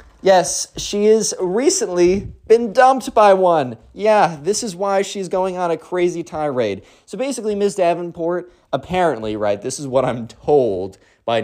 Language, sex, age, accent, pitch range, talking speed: English, male, 20-39, American, 130-200 Hz, 155 wpm